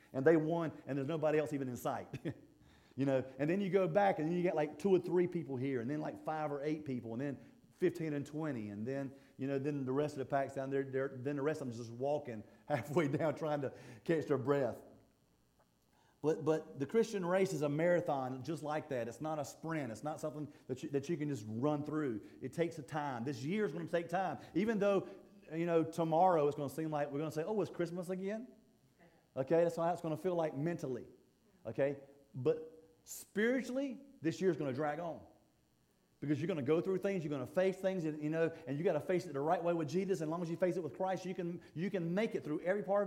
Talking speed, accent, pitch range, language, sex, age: 250 wpm, American, 140-185 Hz, English, male, 40-59